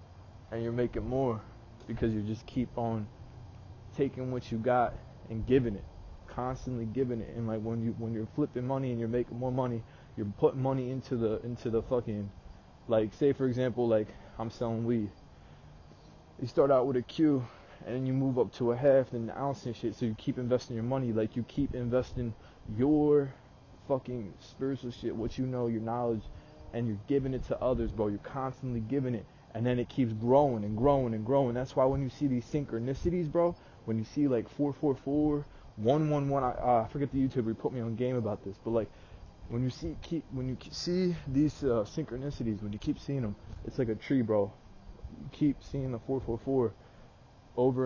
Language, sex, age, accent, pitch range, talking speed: English, male, 20-39, American, 110-130 Hz, 205 wpm